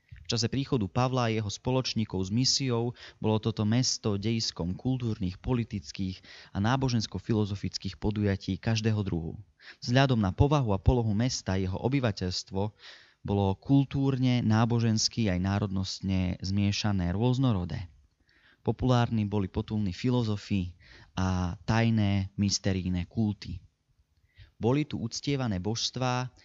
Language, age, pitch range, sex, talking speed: Slovak, 20-39, 95-115 Hz, male, 105 wpm